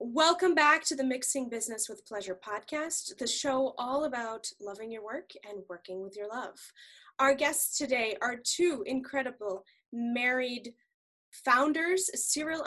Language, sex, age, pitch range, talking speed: English, female, 10-29, 215-285 Hz, 140 wpm